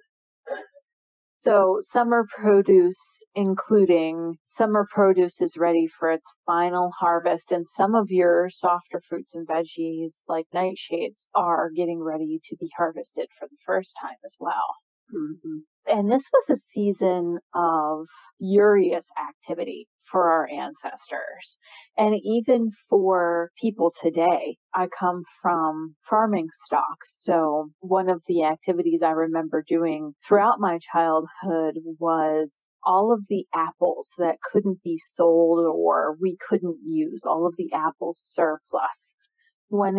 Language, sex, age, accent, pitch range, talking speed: English, female, 40-59, American, 165-205 Hz, 130 wpm